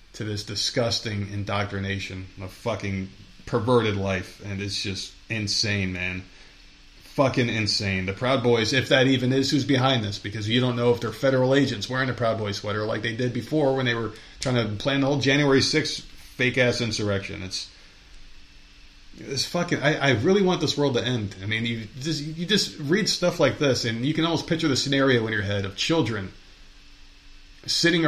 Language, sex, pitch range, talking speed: English, male, 105-145 Hz, 190 wpm